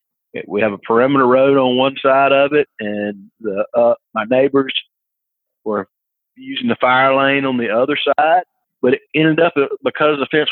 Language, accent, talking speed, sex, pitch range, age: English, American, 170 wpm, male, 130-150 Hz, 40-59